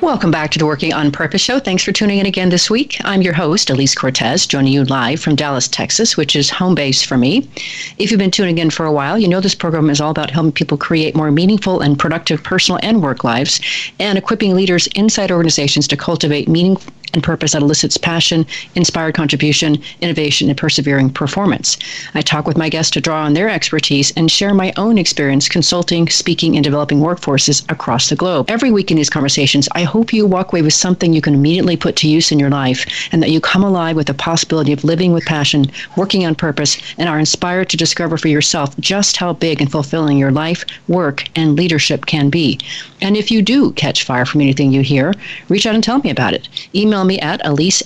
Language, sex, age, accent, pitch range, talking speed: English, female, 40-59, American, 150-185 Hz, 220 wpm